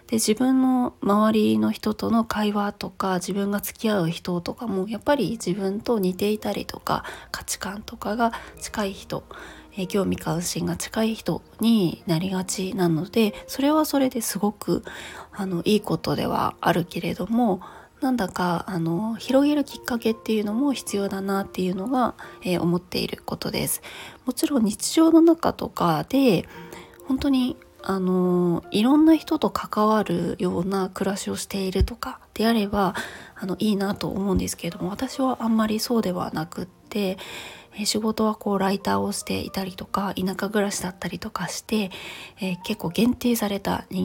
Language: Japanese